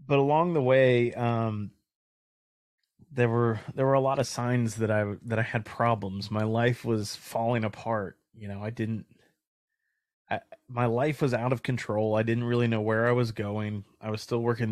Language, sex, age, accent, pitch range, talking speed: English, male, 20-39, American, 105-120 Hz, 190 wpm